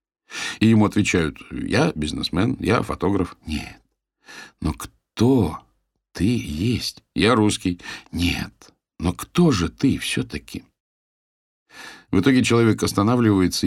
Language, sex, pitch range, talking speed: Russian, male, 85-115 Hz, 105 wpm